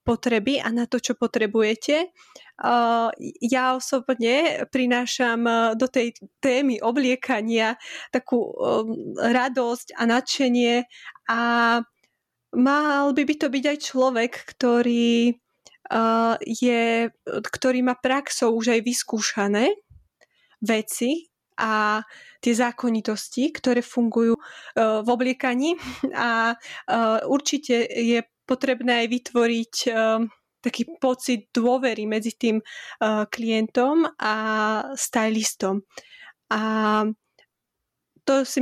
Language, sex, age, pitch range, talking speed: Slovak, female, 20-39, 230-260 Hz, 90 wpm